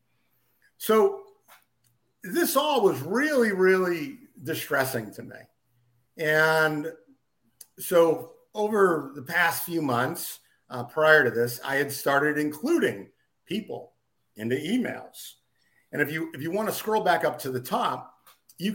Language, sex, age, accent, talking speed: English, male, 50-69, American, 130 wpm